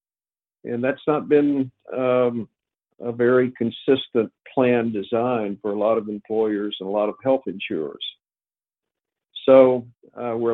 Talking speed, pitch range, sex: 135 wpm, 105-120 Hz, male